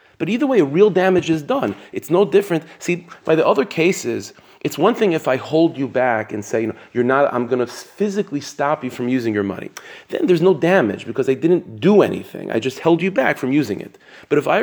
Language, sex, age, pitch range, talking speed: English, male, 30-49, 120-165 Hz, 245 wpm